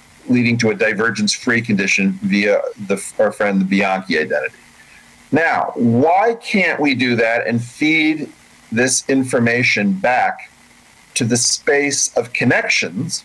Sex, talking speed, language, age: male, 120 wpm, English, 40-59